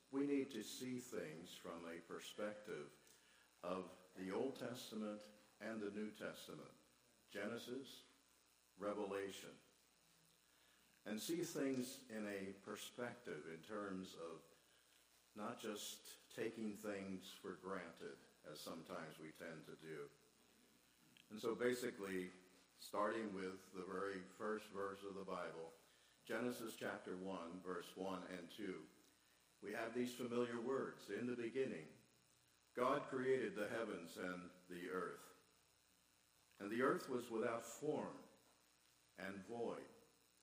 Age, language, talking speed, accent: 60-79, English, 120 wpm, American